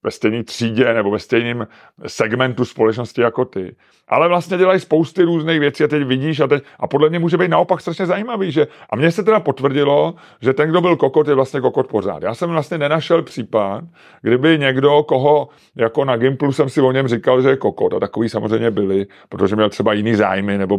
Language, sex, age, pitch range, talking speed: Czech, male, 30-49, 110-155 Hz, 210 wpm